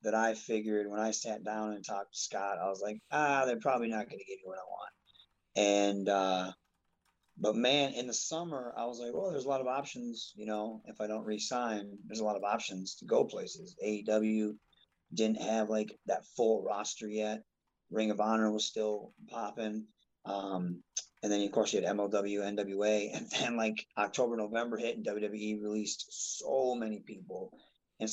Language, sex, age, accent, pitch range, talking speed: English, male, 30-49, American, 105-120 Hz, 190 wpm